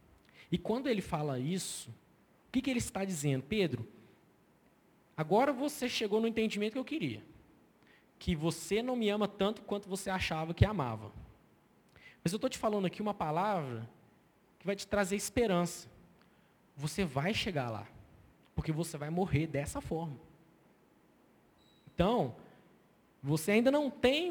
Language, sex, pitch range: Portuguese, male, 140-210 Hz